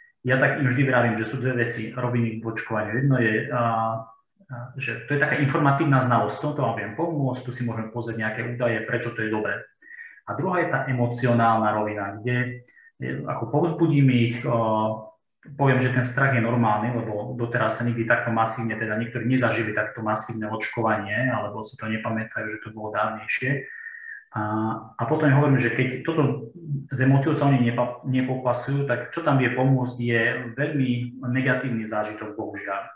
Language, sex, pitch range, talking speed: Slovak, male, 110-130 Hz, 175 wpm